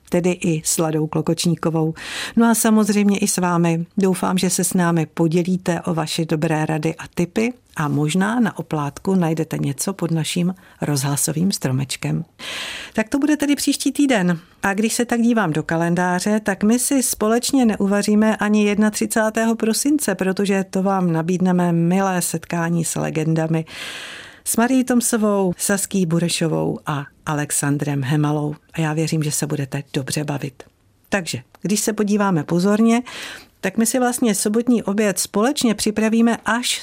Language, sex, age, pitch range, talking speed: Czech, female, 50-69, 155-210 Hz, 150 wpm